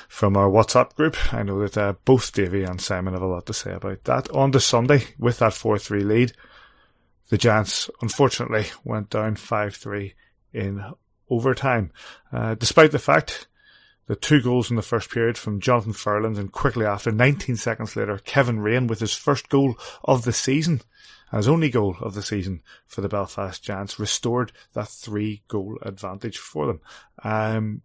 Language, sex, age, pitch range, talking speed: English, male, 30-49, 100-120 Hz, 175 wpm